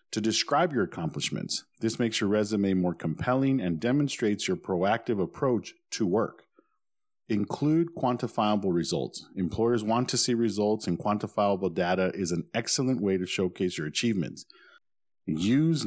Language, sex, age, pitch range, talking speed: English, male, 40-59, 95-120 Hz, 140 wpm